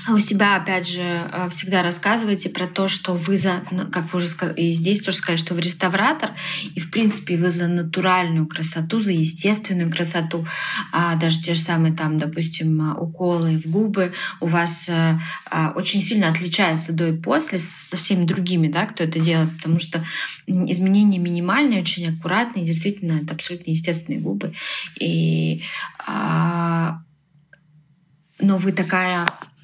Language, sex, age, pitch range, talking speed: Russian, female, 20-39, 165-195 Hz, 140 wpm